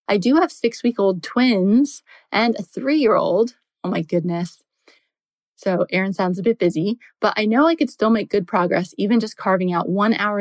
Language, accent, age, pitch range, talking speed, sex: English, American, 20-39, 180-235 Hz, 185 wpm, female